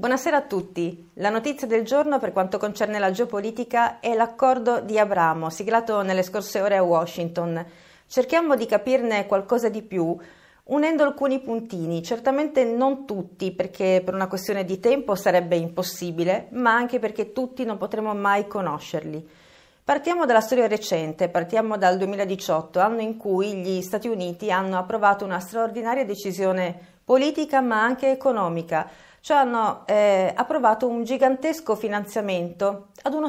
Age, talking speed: 40-59, 145 wpm